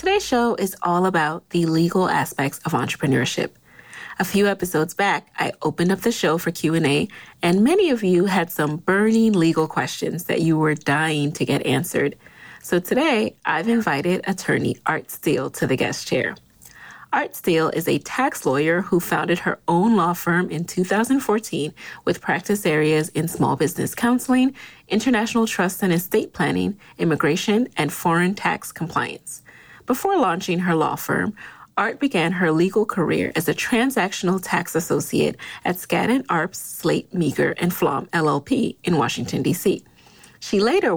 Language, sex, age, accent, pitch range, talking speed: English, female, 30-49, American, 165-215 Hz, 155 wpm